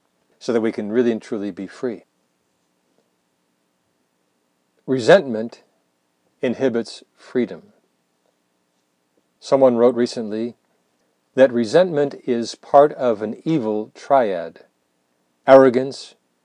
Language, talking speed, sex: English, 90 wpm, male